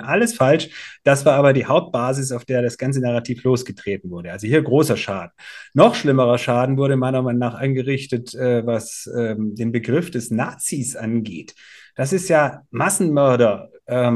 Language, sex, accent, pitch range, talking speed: German, male, German, 125-165 Hz, 155 wpm